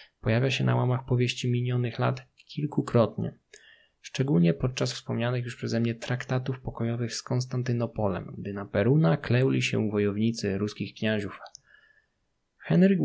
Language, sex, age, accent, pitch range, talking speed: Polish, male, 20-39, native, 110-135 Hz, 125 wpm